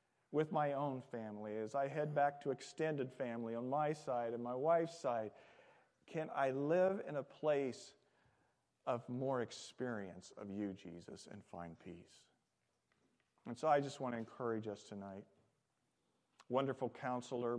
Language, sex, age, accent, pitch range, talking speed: English, male, 40-59, American, 110-140 Hz, 150 wpm